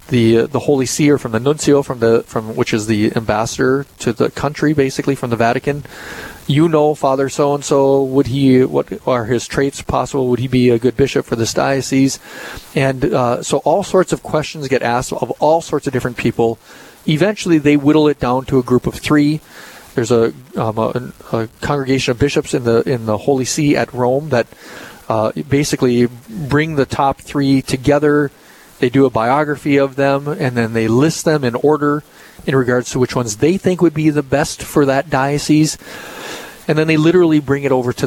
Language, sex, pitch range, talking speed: English, male, 120-150 Hz, 205 wpm